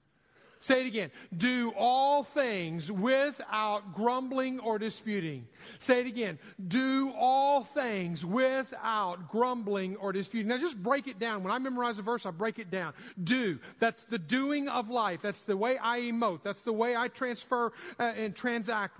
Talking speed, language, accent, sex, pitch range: 165 wpm, English, American, male, 210-260 Hz